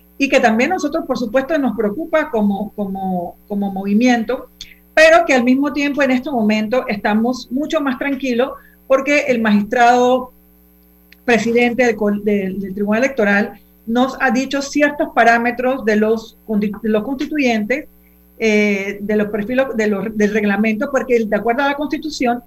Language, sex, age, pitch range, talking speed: Spanish, female, 40-59, 210-270 Hz, 150 wpm